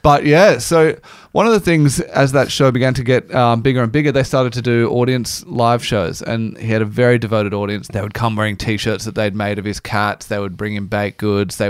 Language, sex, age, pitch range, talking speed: English, male, 20-39, 105-125 Hz, 250 wpm